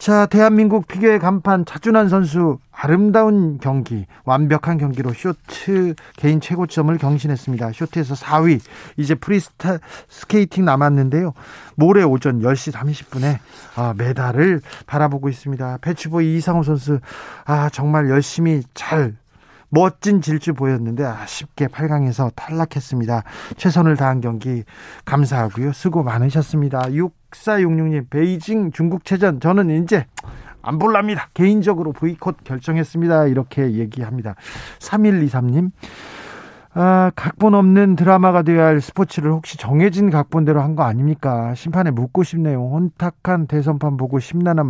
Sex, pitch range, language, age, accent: male, 135-175 Hz, Korean, 40-59, native